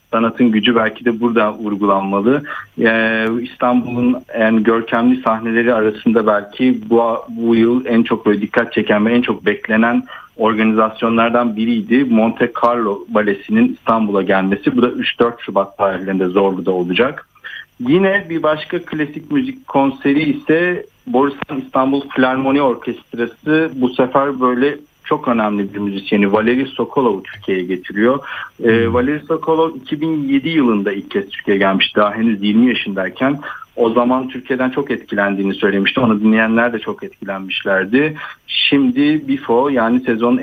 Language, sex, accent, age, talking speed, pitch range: Turkish, male, native, 50-69, 130 wpm, 105-125 Hz